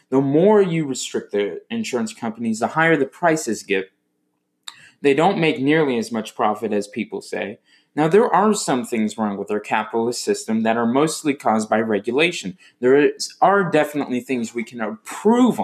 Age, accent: 20-39, American